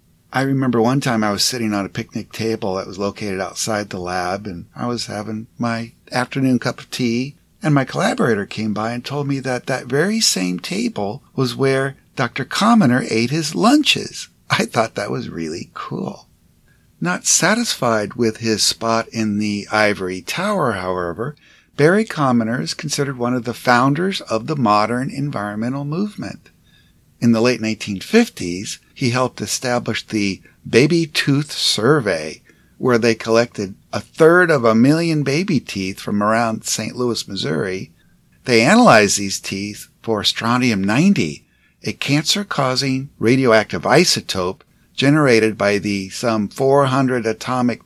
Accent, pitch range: American, 105-140 Hz